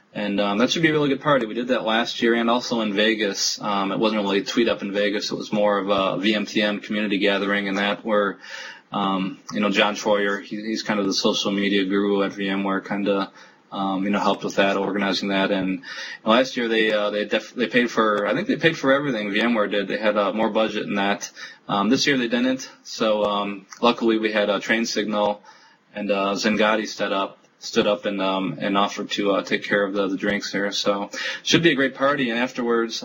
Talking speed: 240 wpm